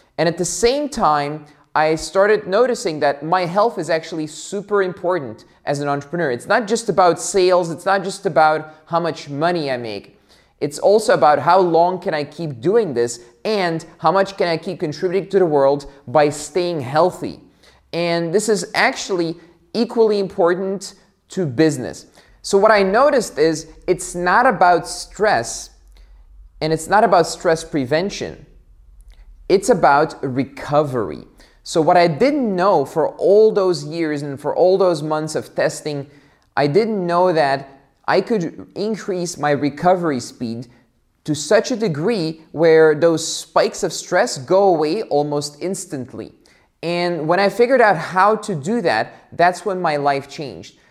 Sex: male